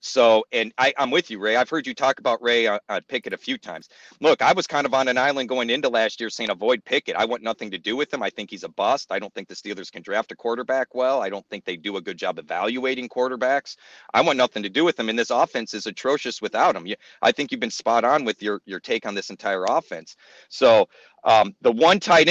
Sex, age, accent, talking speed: male, 40-59, American, 265 wpm